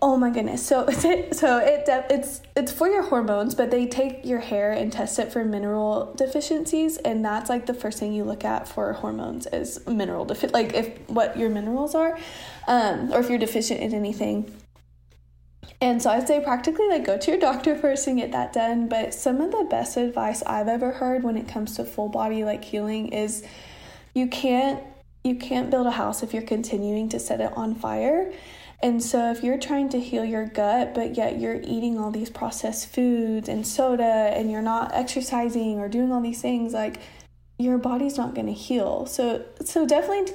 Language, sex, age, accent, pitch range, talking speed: English, female, 20-39, American, 215-260 Hz, 200 wpm